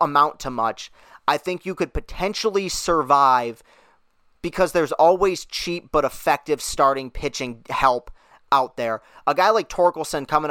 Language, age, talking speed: English, 30-49, 145 wpm